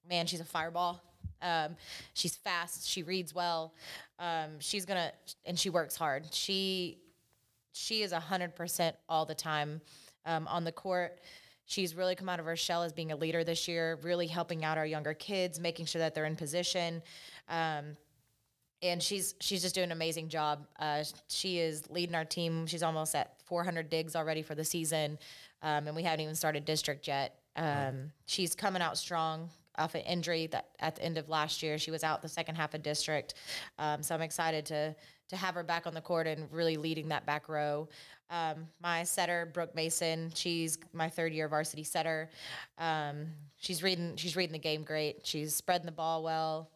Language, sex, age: English, female, 20-39